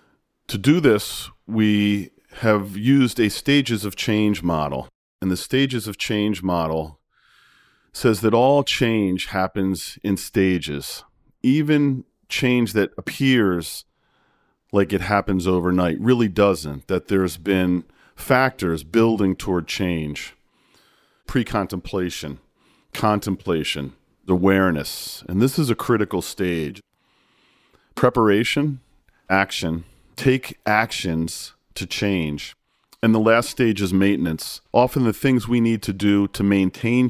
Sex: male